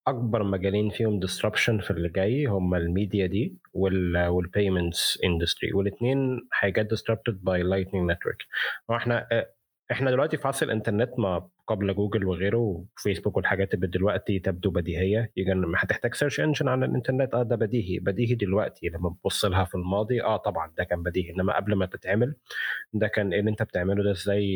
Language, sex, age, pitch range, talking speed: Arabic, male, 20-39, 95-120 Hz, 165 wpm